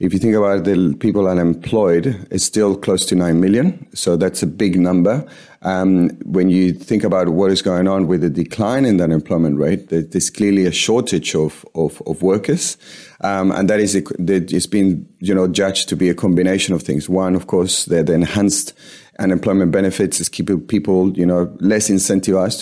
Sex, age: male, 30-49